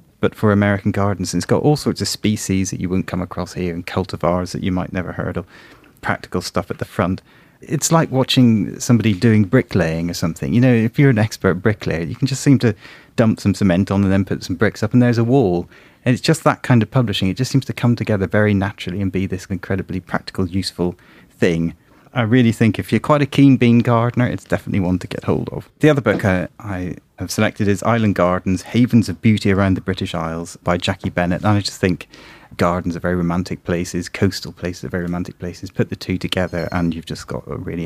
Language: English